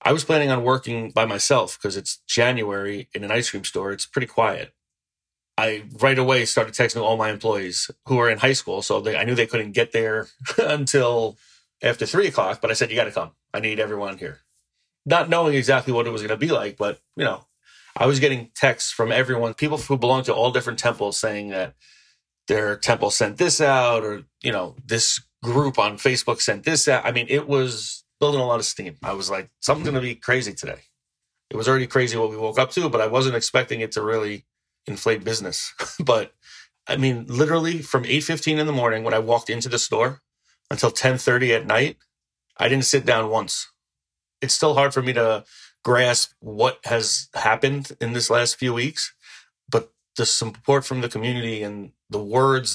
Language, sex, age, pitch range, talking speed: English, male, 30-49, 110-135 Hz, 210 wpm